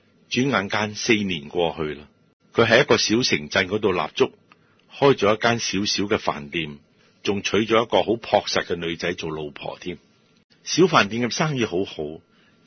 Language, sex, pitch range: Chinese, male, 85-120 Hz